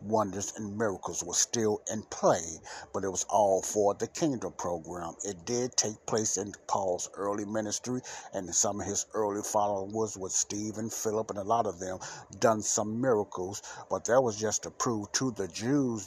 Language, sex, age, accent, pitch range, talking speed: English, male, 60-79, American, 100-115 Hz, 185 wpm